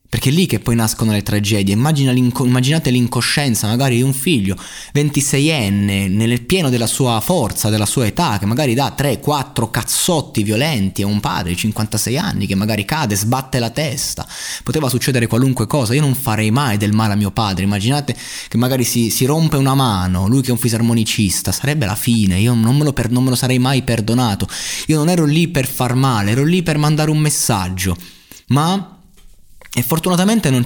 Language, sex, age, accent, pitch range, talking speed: Italian, male, 20-39, native, 105-140 Hz, 195 wpm